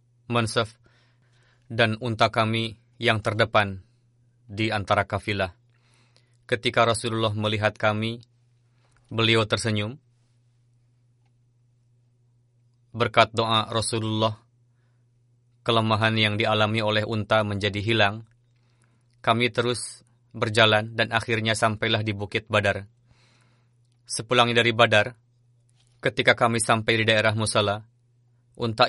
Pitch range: 110-120 Hz